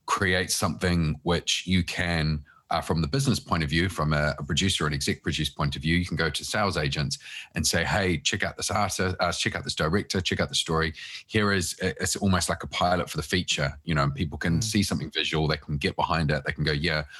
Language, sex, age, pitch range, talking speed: English, male, 30-49, 75-95 Hz, 255 wpm